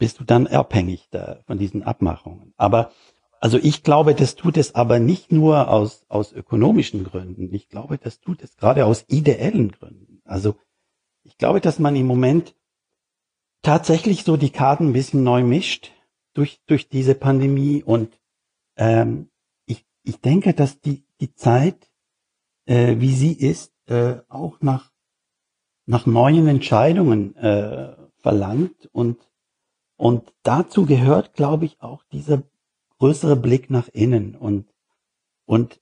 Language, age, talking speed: German, 60-79, 140 wpm